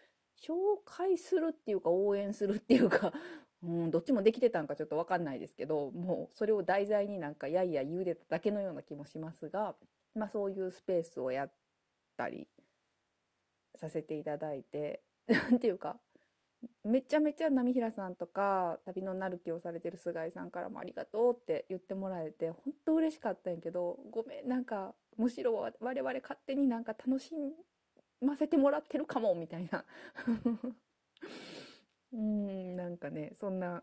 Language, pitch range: Japanese, 165-245 Hz